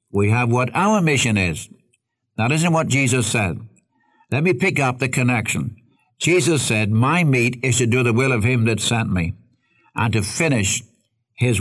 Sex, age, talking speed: male, 60-79, 180 wpm